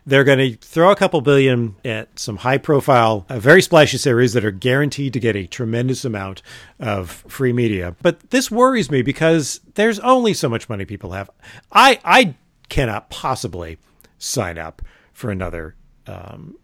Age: 40-59